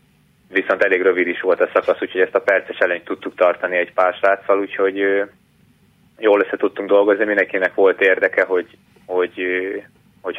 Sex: male